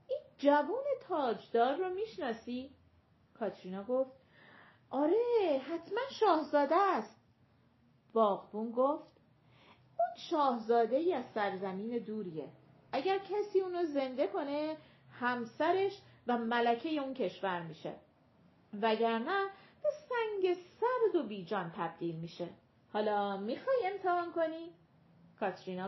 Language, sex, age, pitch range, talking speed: Persian, female, 40-59, 205-330 Hz, 95 wpm